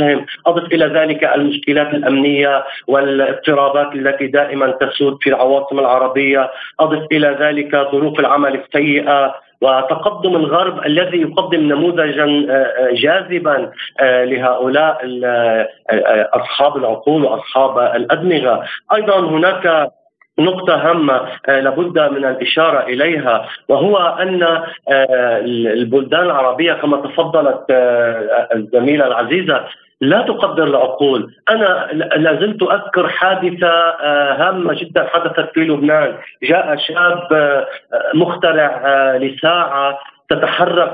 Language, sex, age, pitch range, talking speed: Arabic, male, 50-69, 135-170 Hz, 90 wpm